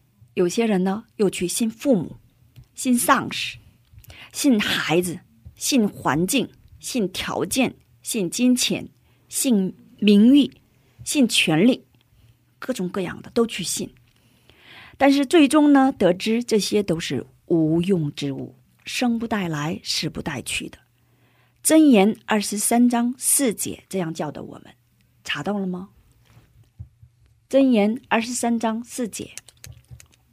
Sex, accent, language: female, Chinese, Korean